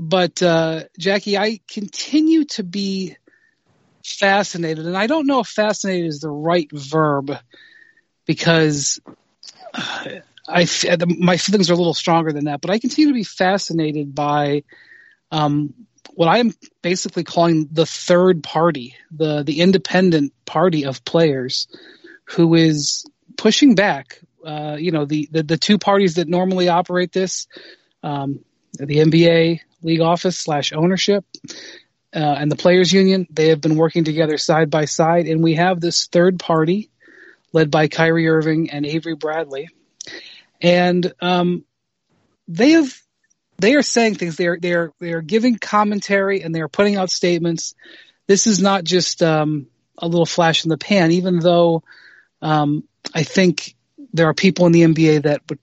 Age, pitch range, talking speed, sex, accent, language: 30-49, 160-195 Hz, 150 wpm, male, American, English